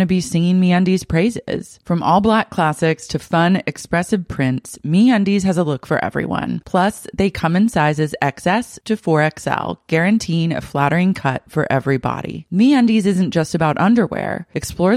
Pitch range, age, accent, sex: 145-195 Hz, 30-49, American, female